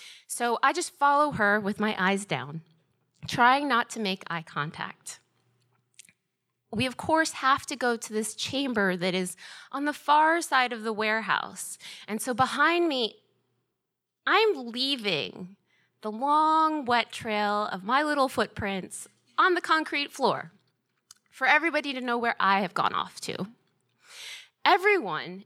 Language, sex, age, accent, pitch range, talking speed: English, female, 20-39, American, 190-295 Hz, 145 wpm